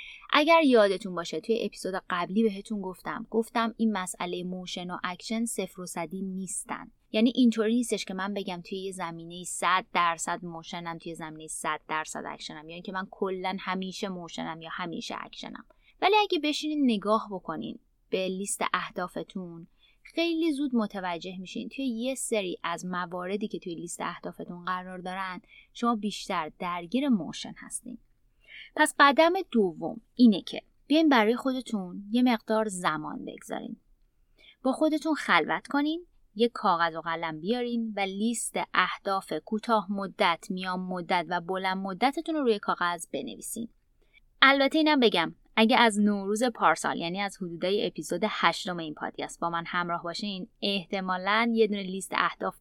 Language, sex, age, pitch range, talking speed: Persian, female, 20-39, 175-235 Hz, 150 wpm